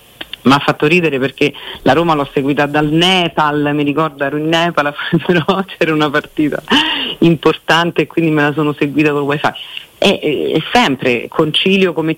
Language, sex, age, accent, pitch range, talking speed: Italian, female, 40-59, native, 135-160 Hz, 170 wpm